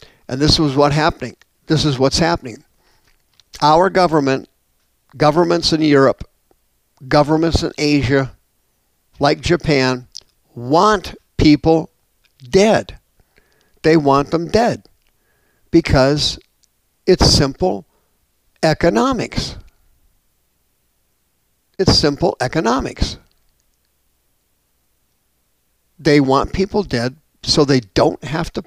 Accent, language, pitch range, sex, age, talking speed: American, English, 115-165 Hz, male, 50-69, 90 wpm